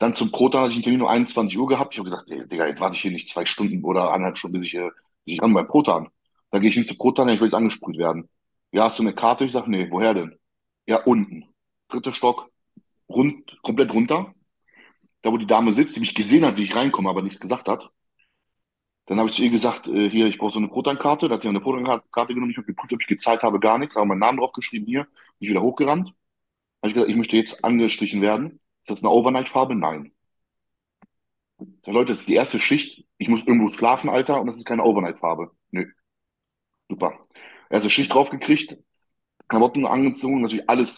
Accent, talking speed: German, 225 wpm